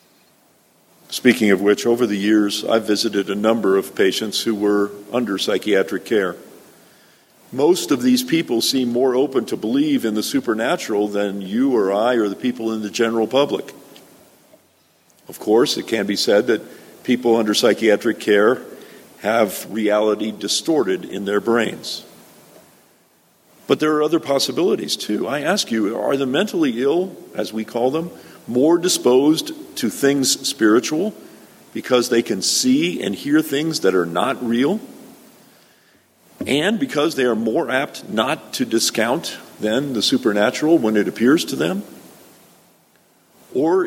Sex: male